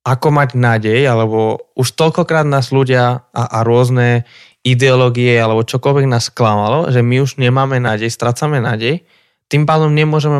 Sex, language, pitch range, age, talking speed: male, Slovak, 120-145 Hz, 20-39, 150 wpm